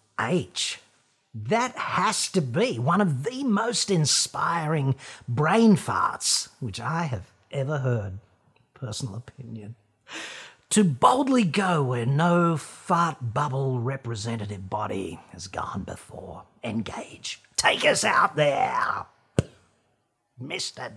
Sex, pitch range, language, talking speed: male, 115-170 Hz, English, 105 wpm